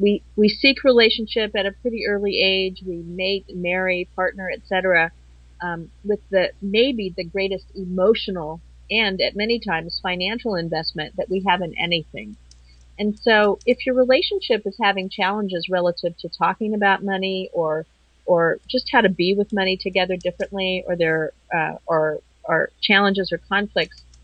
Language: English